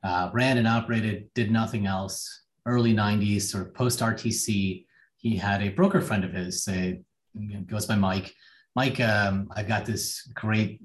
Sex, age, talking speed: male, 30-49, 170 wpm